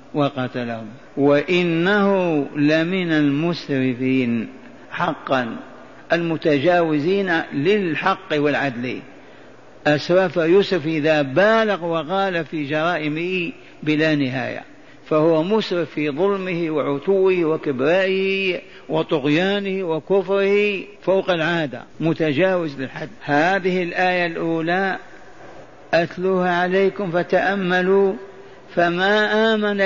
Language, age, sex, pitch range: Arabic, 50-69, male, 155-195 Hz